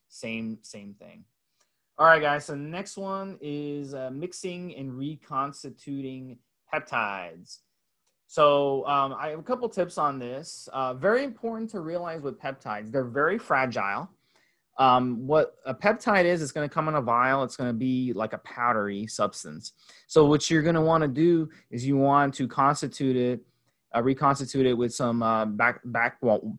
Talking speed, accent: 175 wpm, American